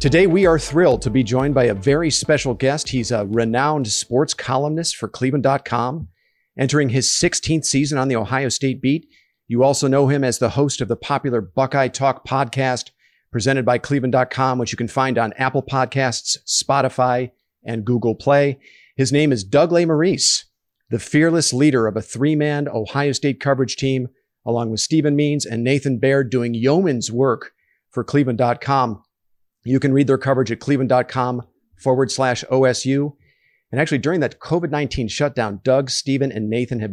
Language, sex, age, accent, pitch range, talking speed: English, male, 50-69, American, 120-140 Hz, 165 wpm